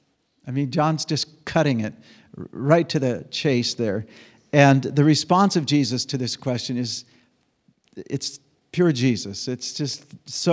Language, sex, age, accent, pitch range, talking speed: English, male, 50-69, American, 120-150 Hz, 150 wpm